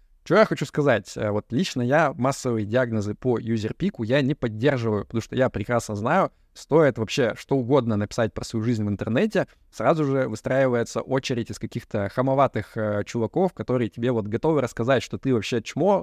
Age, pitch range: 20-39, 110-130 Hz